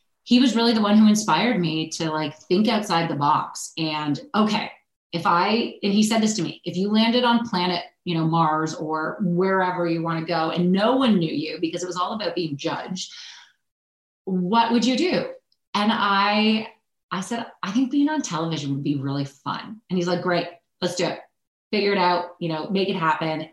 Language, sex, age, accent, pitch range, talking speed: English, female, 30-49, American, 155-210 Hz, 210 wpm